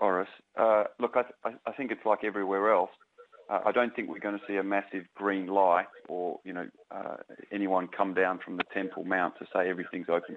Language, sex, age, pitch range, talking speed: English, male, 40-59, 95-105 Hz, 215 wpm